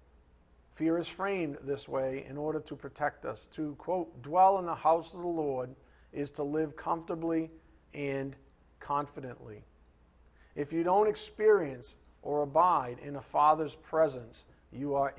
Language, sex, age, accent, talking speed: English, male, 50-69, American, 145 wpm